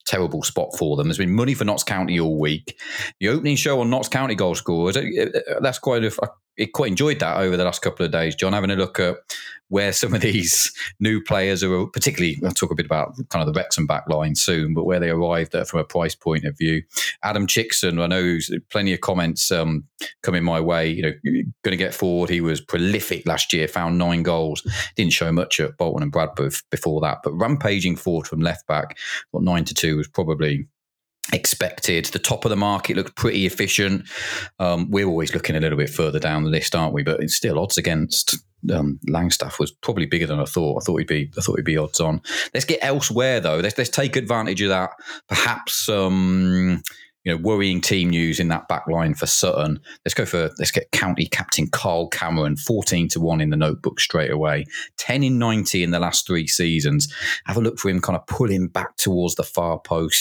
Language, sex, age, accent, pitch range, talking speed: English, male, 30-49, British, 80-100 Hz, 220 wpm